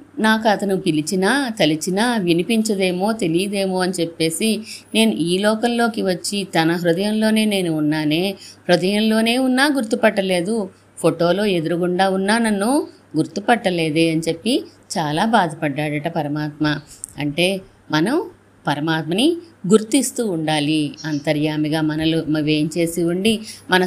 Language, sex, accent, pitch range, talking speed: Telugu, female, native, 160-225 Hz, 95 wpm